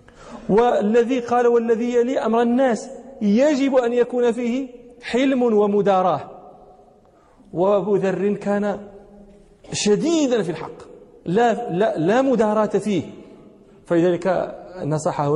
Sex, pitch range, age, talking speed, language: male, 155-210 Hz, 40-59, 100 wpm, Arabic